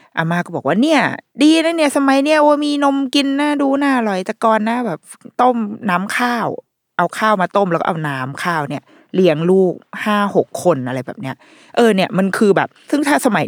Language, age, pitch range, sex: Thai, 20-39, 160-230 Hz, female